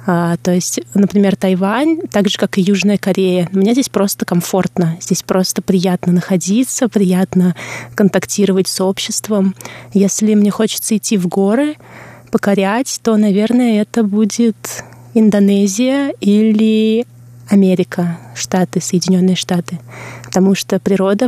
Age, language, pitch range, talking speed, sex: 20-39, Russian, 180-205 Hz, 120 wpm, female